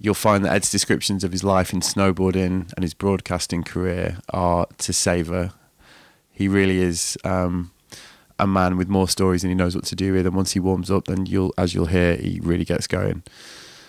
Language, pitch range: English, 90-100 Hz